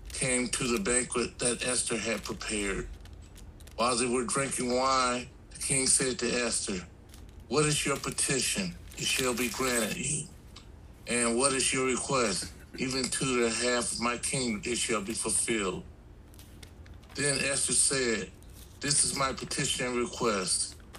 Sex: male